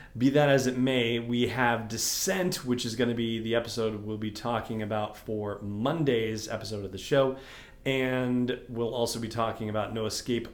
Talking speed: 190 wpm